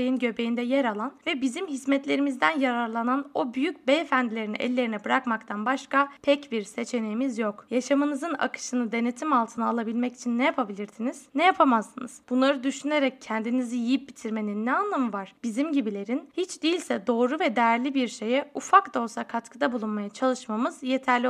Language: Turkish